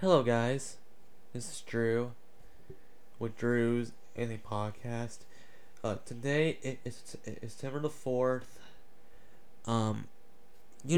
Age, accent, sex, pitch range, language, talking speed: 20-39, American, male, 110-130 Hz, English, 105 wpm